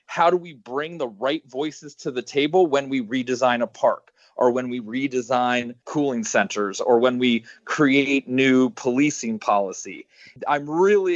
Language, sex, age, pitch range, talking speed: English, male, 30-49, 125-155 Hz, 160 wpm